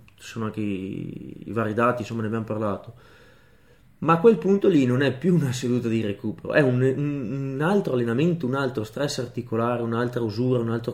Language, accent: Italian, native